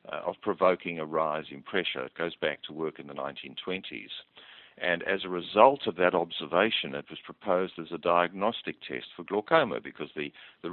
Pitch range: 75-90 Hz